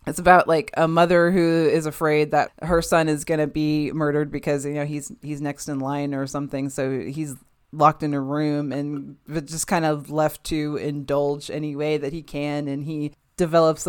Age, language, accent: 20-39, English, American